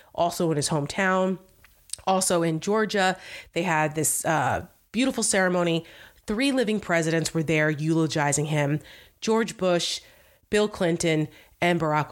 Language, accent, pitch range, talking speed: English, American, 165-235 Hz, 130 wpm